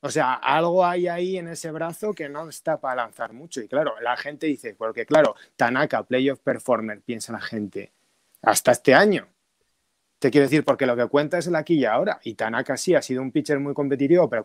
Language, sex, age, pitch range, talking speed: Spanish, male, 30-49, 140-170 Hz, 215 wpm